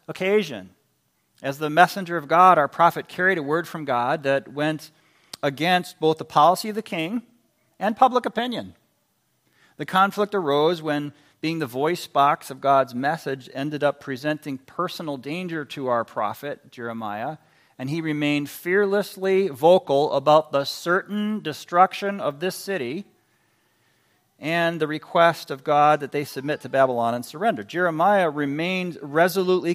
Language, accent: English, American